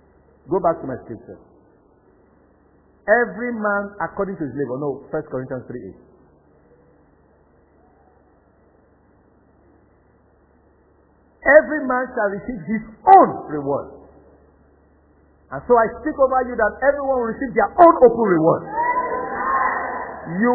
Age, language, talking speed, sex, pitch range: 50-69, English, 110 wpm, male, 185-295 Hz